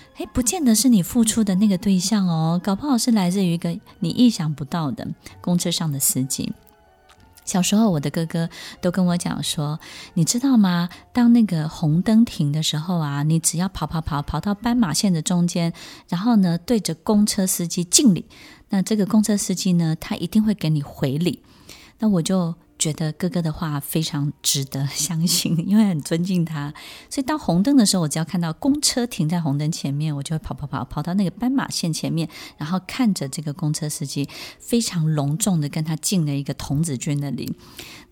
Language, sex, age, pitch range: Chinese, female, 20-39, 155-210 Hz